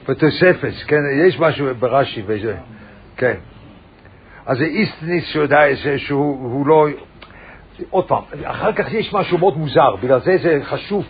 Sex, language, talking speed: male, English, 120 wpm